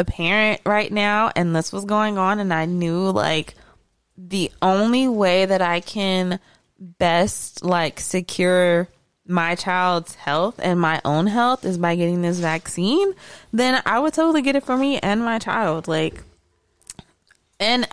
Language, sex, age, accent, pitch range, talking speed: English, female, 20-39, American, 185-260 Hz, 155 wpm